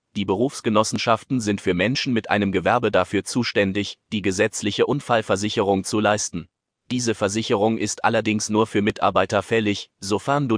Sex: male